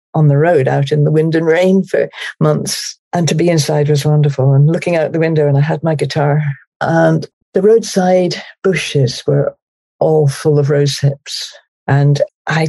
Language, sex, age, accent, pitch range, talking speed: English, female, 60-79, British, 140-165 Hz, 185 wpm